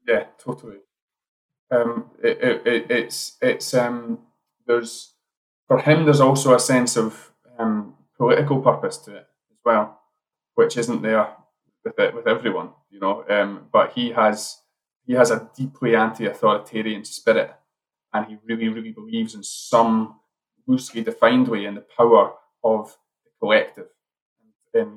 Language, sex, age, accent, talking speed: English, male, 20-39, British, 140 wpm